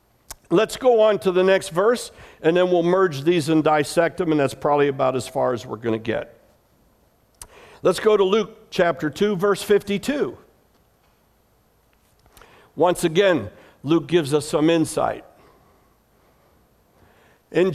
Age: 60-79